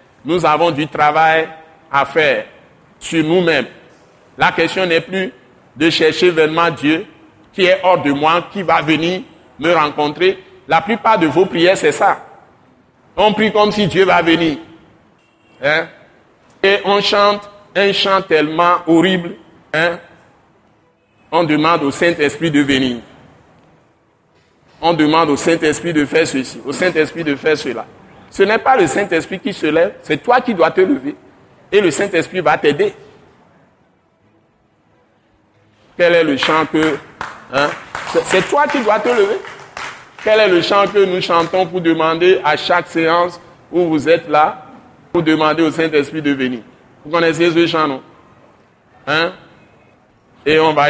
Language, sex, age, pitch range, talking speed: French, male, 60-79, 150-185 Hz, 150 wpm